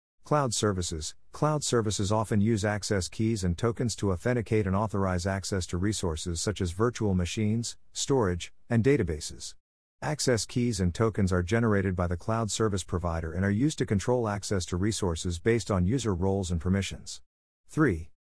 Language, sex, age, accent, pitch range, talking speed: English, male, 50-69, American, 90-110 Hz, 165 wpm